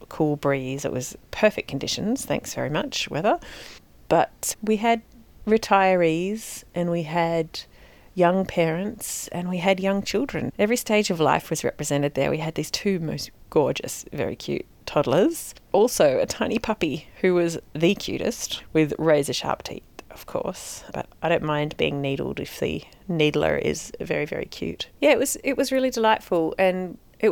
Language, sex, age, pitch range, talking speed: English, female, 40-59, 155-195 Hz, 165 wpm